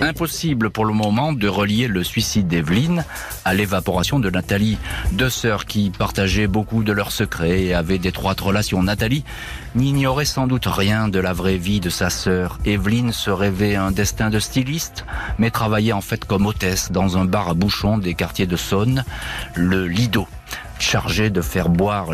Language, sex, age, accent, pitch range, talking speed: French, male, 40-59, French, 95-120 Hz, 175 wpm